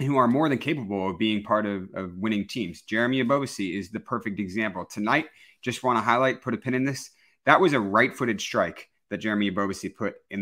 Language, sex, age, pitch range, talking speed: English, male, 30-49, 100-130 Hz, 220 wpm